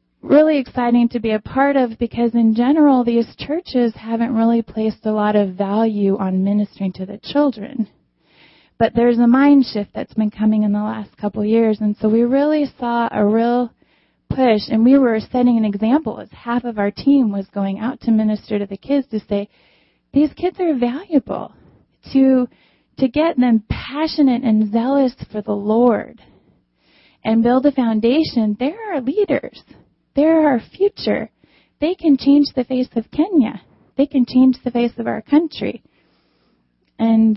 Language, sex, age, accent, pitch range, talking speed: English, female, 30-49, American, 210-260 Hz, 170 wpm